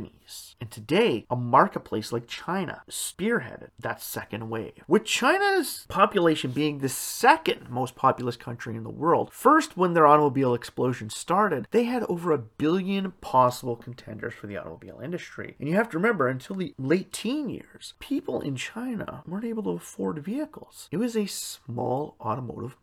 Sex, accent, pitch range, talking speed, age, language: male, American, 120-180 Hz, 165 wpm, 30-49, English